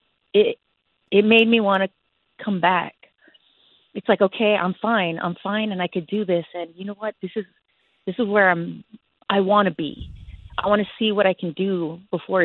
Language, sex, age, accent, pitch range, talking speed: English, female, 30-49, American, 180-220 Hz, 195 wpm